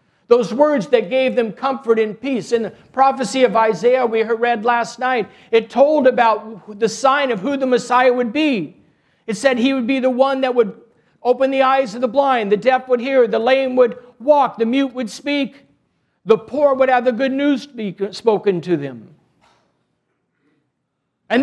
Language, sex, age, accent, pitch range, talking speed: English, male, 50-69, American, 225-270 Hz, 190 wpm